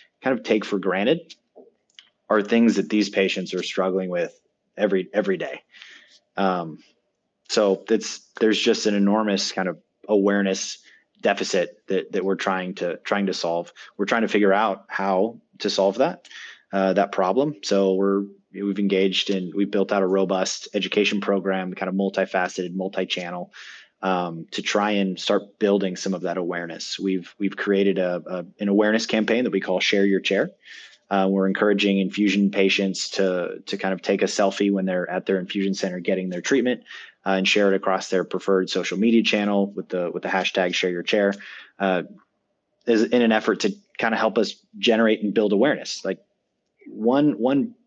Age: 20-39